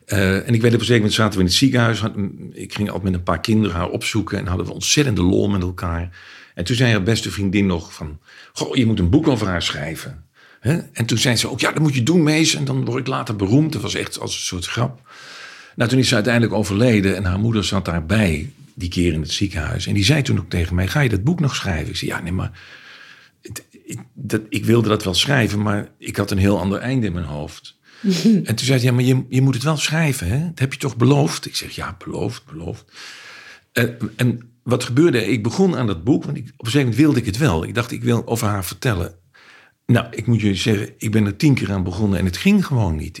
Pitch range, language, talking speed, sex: 95-130 Hz, Dutch, 265 wpm, male